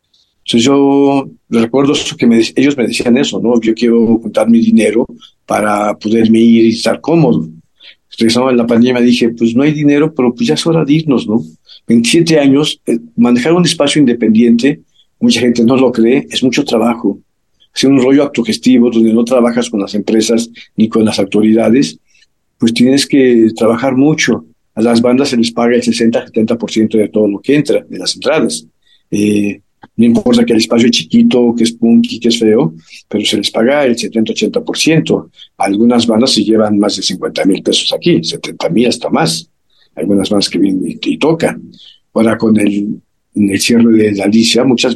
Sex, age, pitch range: male, 50-69, 110-130 Hz